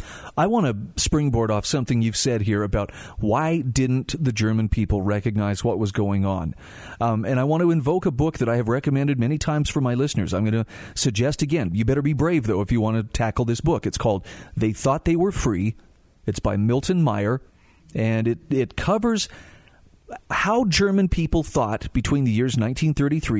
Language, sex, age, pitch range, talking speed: English, male, 40-59, 110-155 Hz, 195 wpm